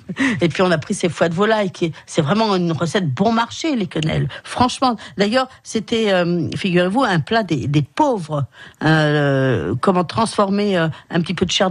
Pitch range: 165-235 Hz